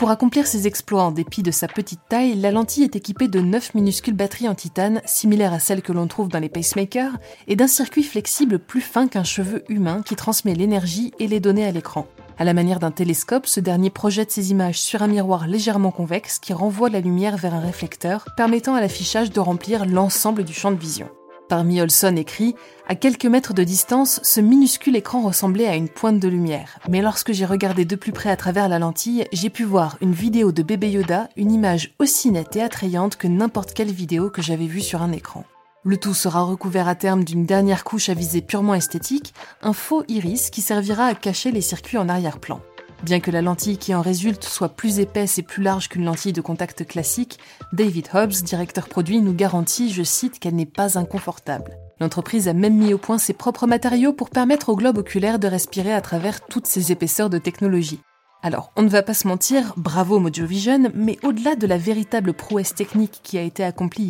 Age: 20-39